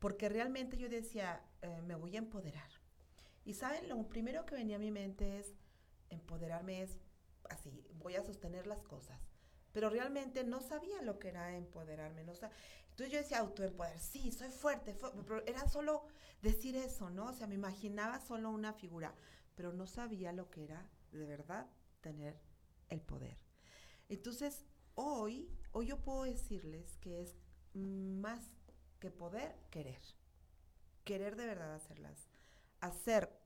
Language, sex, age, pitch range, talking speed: Spanish, female, 40-59, 170-240 Hz, 160 wpm